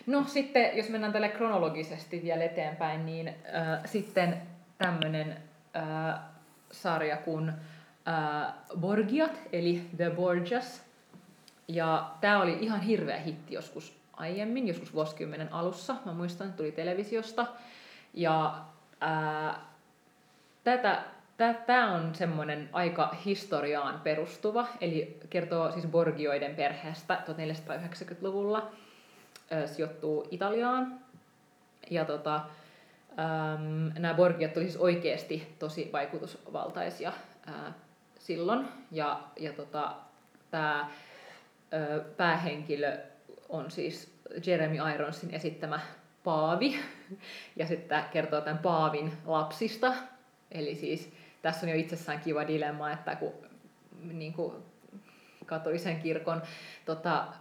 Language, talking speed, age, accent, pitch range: Finnish, 95 wpm, 30-49, native, 155-195 Hz